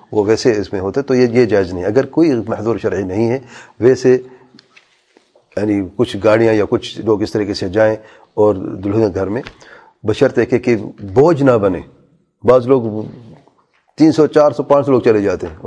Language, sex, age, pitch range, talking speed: English, male, 40-59, 110-145 Hz, 190 wpm